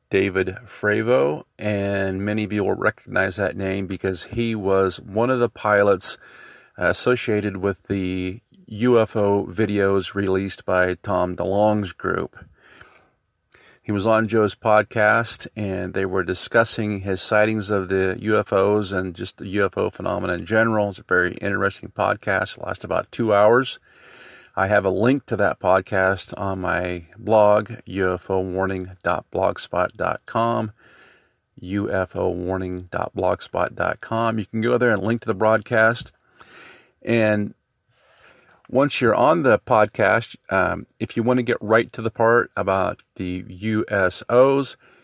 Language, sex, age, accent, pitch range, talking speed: English, male, 40-59, American, 95-115 Hz, 130 wpm